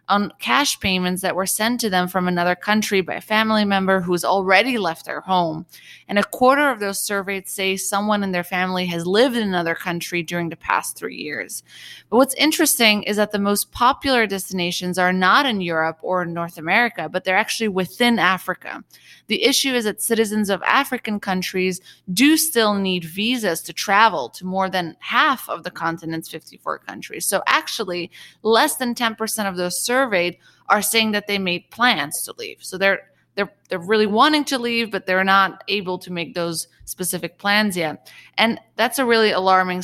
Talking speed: 190 wpm